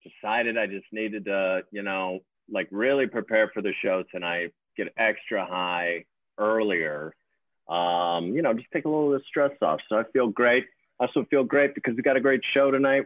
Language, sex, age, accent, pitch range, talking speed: English, male, 40-59, American, 100-120 Hz, 200 wpm